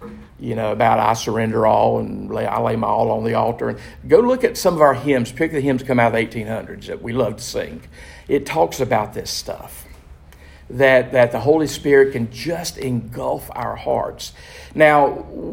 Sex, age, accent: male, 50-69, American